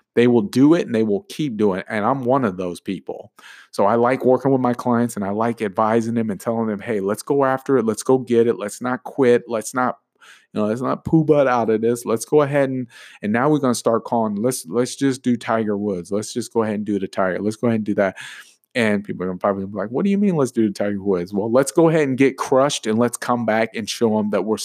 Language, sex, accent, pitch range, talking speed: English, male, American, 105-125 Hz, 285 wpm